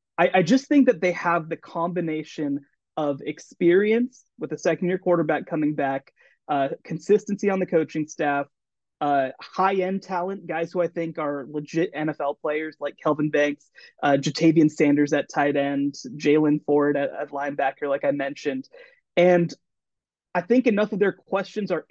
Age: 20-39